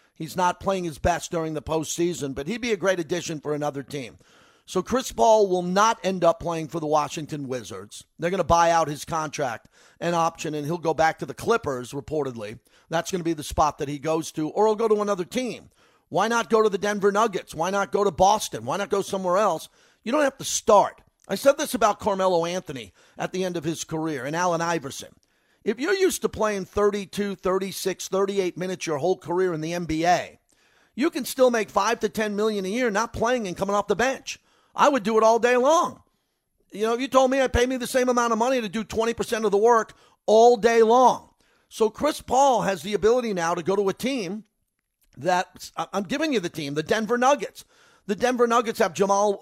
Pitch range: 165-230 Hz